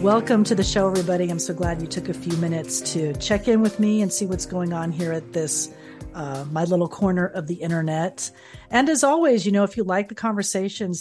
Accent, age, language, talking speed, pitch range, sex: American, 40-59, English, 235 wpm, 160-210 Hz, female